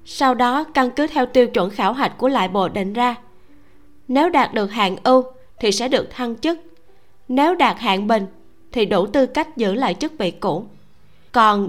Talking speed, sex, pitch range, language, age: 195 wpm, female, 205-270 Hz, Vietnamese, 20-39